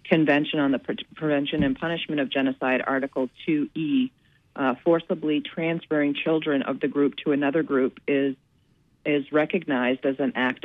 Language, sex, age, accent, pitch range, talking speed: English, female, 40-59, American, 135-160 Hz, 150 wpm